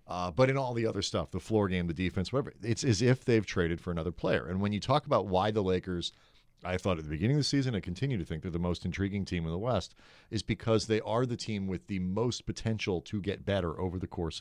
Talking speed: 270 wpm